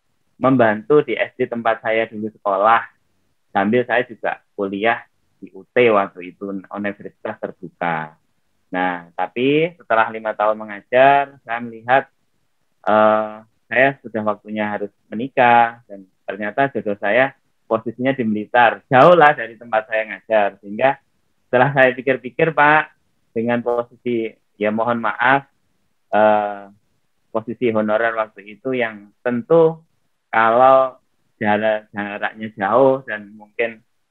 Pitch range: 105-130 Hz